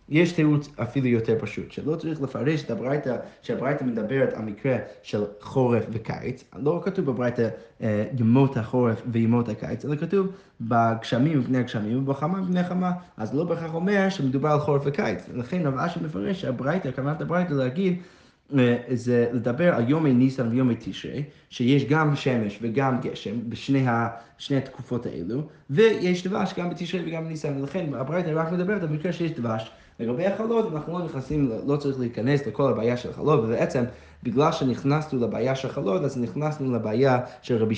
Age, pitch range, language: 20-39, 120-155 Hz, Hebrew